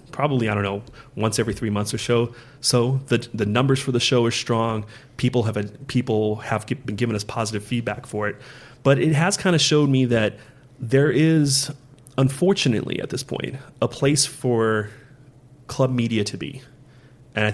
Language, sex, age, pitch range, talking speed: English, male, 30-49, 105-130 Hz, 180 wpm